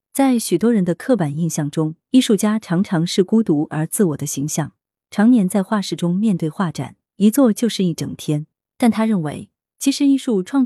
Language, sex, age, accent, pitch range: Chinese, female, 30-49, native, 160-220 Hz